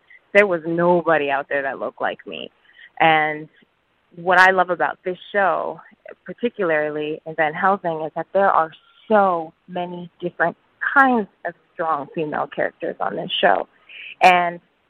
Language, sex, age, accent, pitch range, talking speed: English, female, 20-39, American, 165-205 Hz, 145 wpm